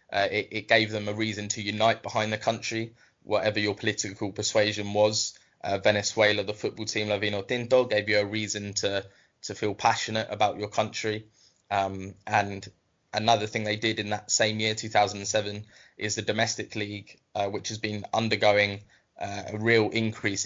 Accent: British